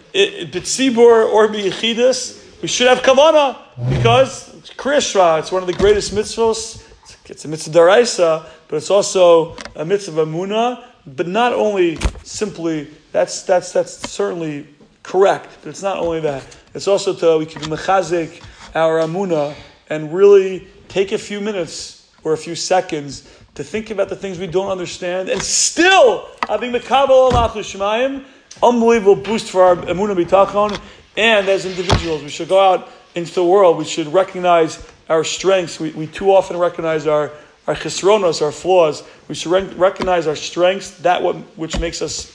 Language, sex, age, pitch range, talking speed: English, male, 30-49, 160-200 Hz, 150 wpm